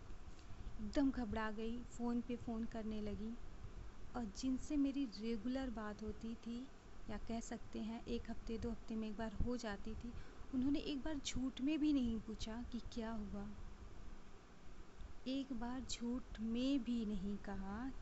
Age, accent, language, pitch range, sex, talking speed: 30-49, native, Hindi, 205-245 Hz, female, 155 wpm